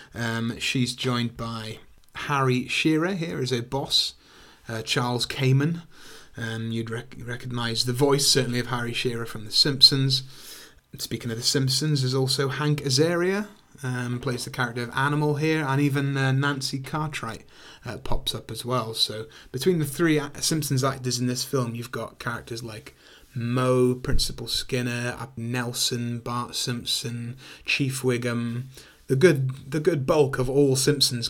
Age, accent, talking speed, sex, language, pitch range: 30-49, British, 155 wpm, male, English, 115-135 Hz